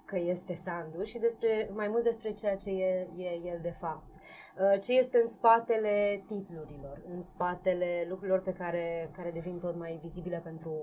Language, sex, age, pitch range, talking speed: Romanian, female, 20-39, 175-205 Hz, 170 wpm